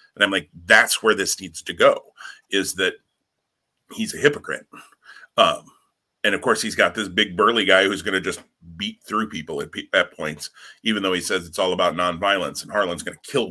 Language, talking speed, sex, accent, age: English, 210 wpm, male, American, 30-49